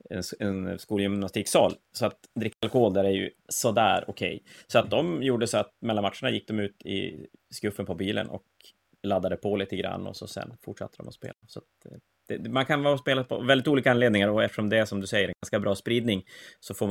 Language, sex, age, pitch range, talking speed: Swedish, male, 30-49, 95-115 Hz, 225 wpm